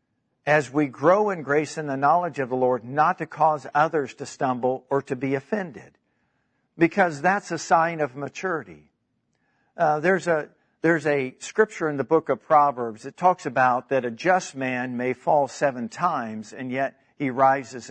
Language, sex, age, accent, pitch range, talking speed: English, male, 50-69, American, 130-155 Hz, 180 wpm